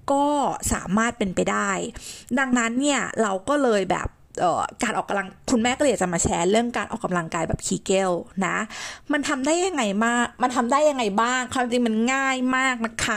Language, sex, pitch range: Thai, female, 200-265 Hz